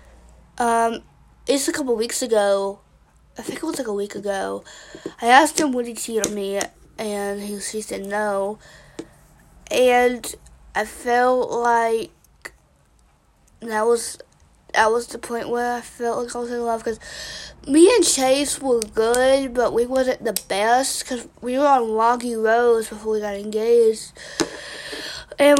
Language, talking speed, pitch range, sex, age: English, 155 wpm, 215-245 Hz, female, 20-39